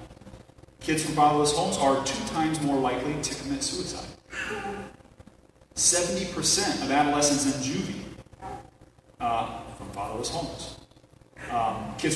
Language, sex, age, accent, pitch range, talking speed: English, male, 30-49, American, 125-150 Hz, 115 wpm